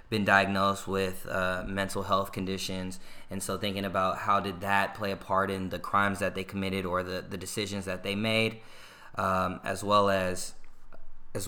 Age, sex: 20-39, male